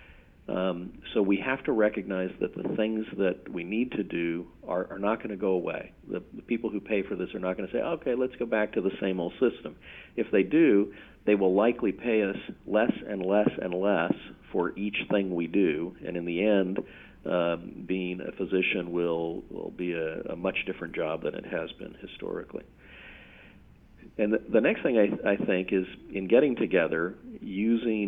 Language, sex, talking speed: English, male, 195 wpm